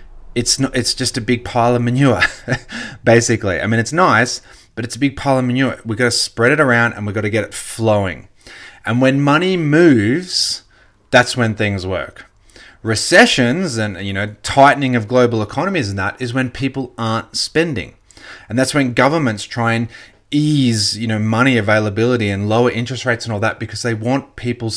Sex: male